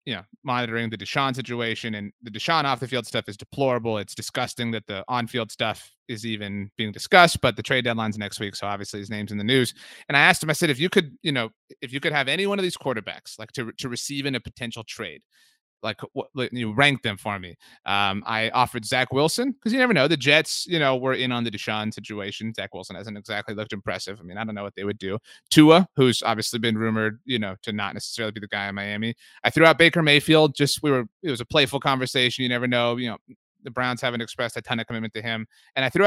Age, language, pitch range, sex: 30-49, English, 110-155 Hz, male